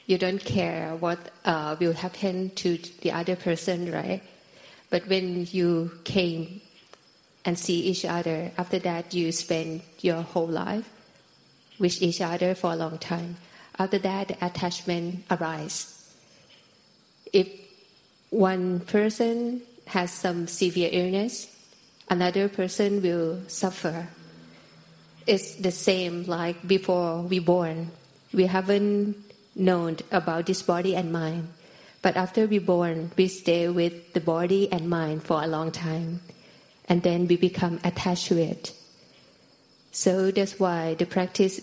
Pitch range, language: 170-190 Hz, Thai